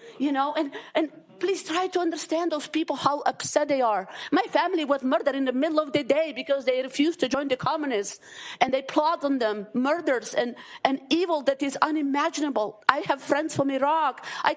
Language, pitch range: English, 250-325 Hz